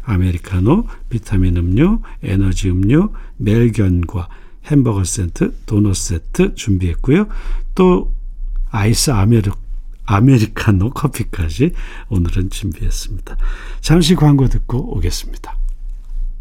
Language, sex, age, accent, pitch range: Korean, male, 50-69, native, 100-145 Hz